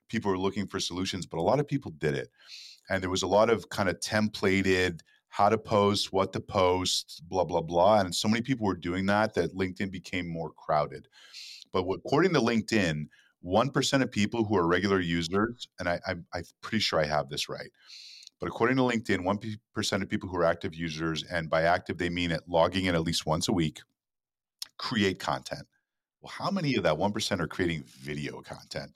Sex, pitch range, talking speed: male, 85-105 Hz, 200 wpm